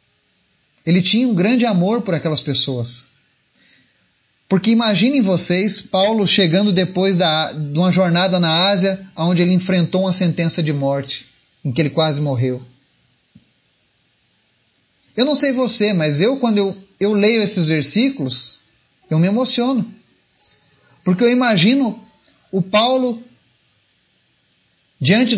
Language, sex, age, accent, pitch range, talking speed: Portuguese, male, 30-49, Brazilian, 145-205 Hz, 125 wpm